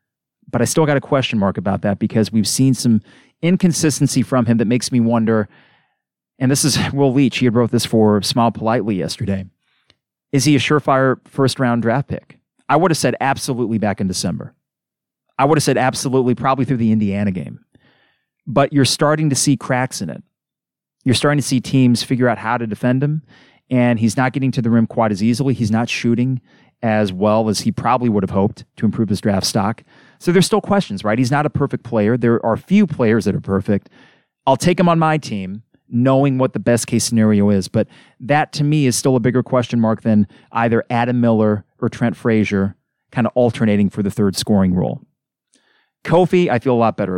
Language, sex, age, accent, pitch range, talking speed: English, male, 30-49, American, 110-135 Hz, 210 wpm